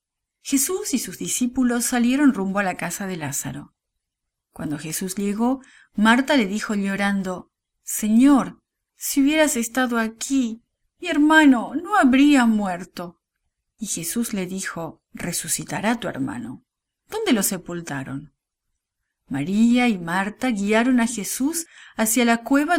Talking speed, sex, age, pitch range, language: 125 wpm, female, 40-59, 175-255 Hz, English